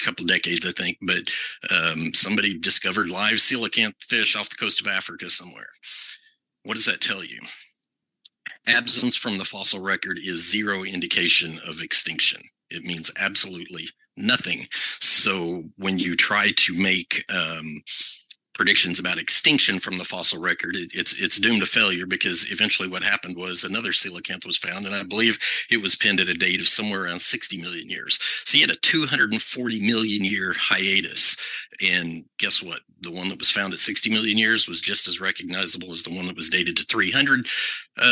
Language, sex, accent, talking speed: English, male, American, 175 wpm